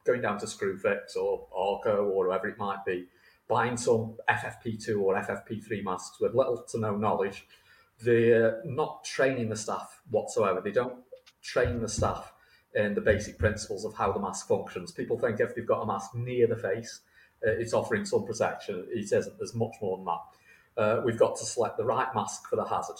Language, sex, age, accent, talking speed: English, male, 40-59, British, 195 wpm